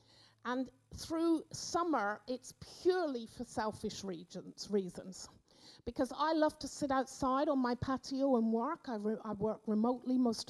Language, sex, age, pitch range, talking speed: English, female, 50-69, 215-270 Hz, 135 wpm